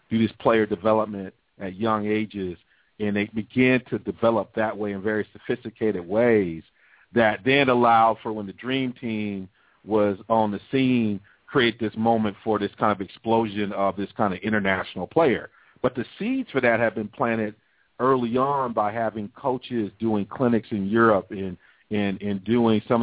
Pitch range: 110-130 Hz